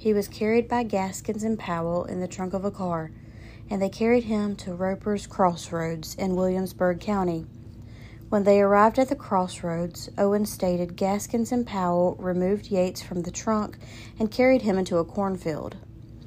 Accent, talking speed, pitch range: American, 165 wpm, 165-205 Hz